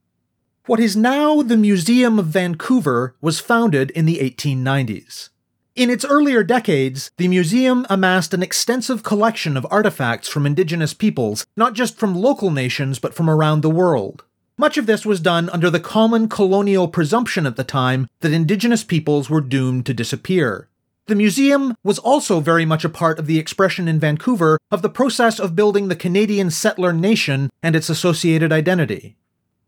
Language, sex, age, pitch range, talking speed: English, male, 30-49, 145-210 Hz, 170 wpm